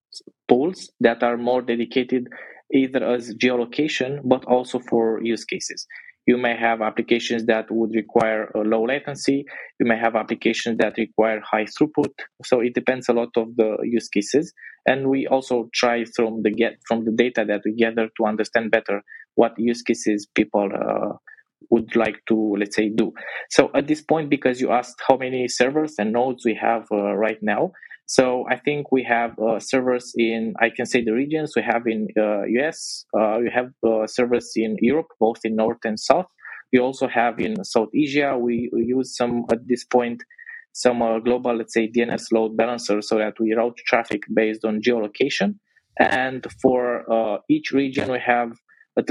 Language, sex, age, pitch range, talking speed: English, male, 20-39, 110-125 Hz, 185 wpm